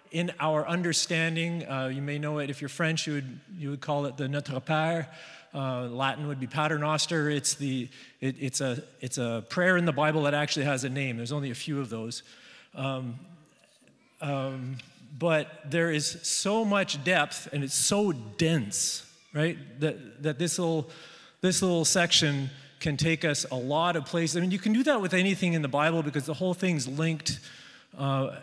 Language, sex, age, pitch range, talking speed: English, male, 30-49, 135-170 Hz, 195 wpm